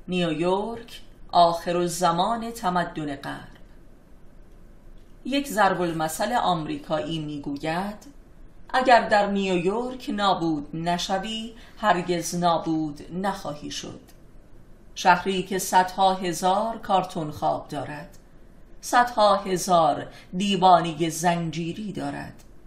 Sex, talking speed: female, 80 wpm